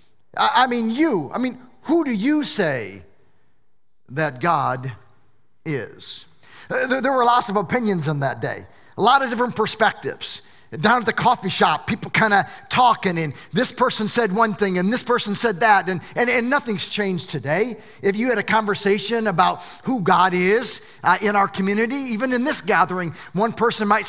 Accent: American